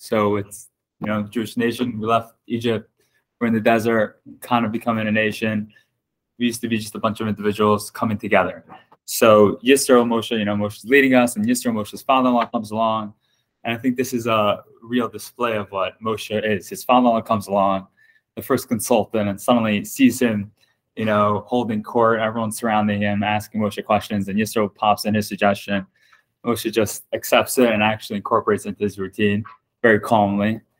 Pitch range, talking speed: 100-120 Hz, 185 wpm